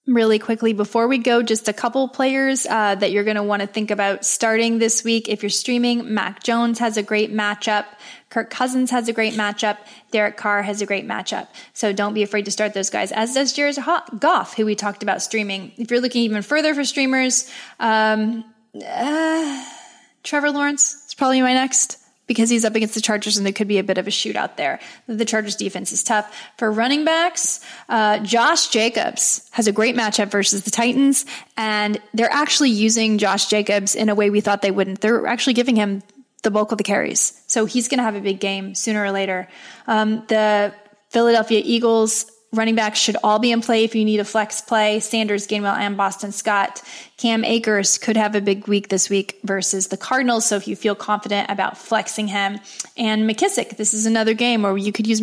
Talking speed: 210 wpm